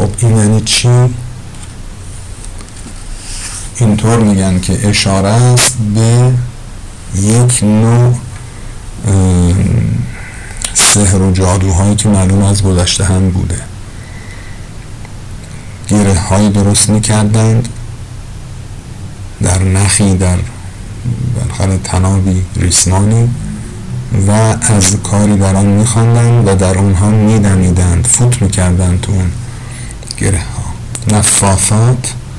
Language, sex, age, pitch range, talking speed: Persian, male, 50-69, 95-110 Hz, 80 wpm